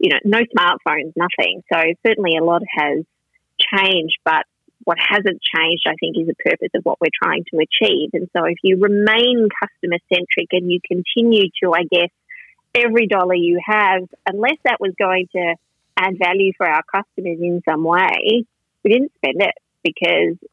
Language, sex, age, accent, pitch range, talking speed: English, female, 30-49, Australian, 170-215 Hz, 175 wpm